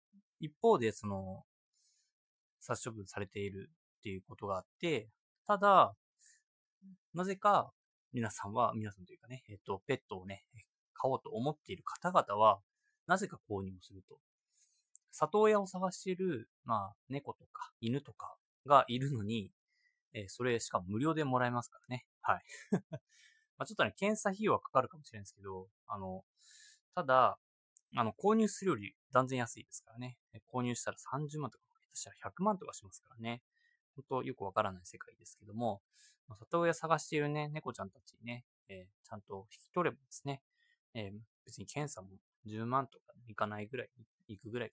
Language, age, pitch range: Japanese, 20-39, 105-175 Hz